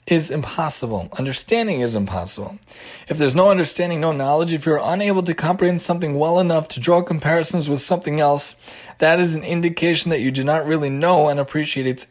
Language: English